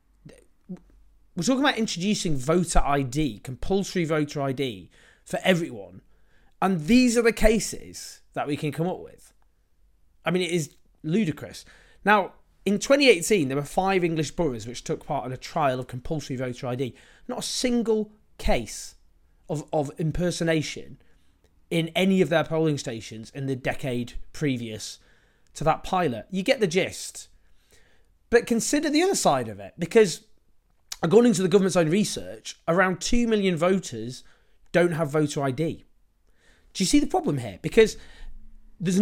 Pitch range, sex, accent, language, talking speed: 125-185 Hz, male, British, English, 150 wpm